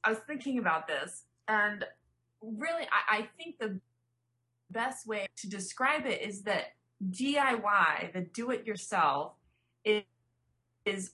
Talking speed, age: 135 wpm, 20-39